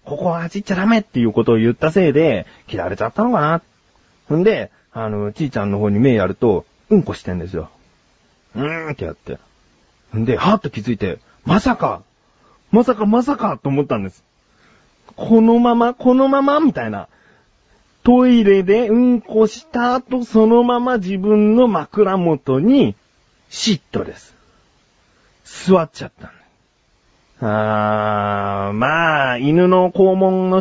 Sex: male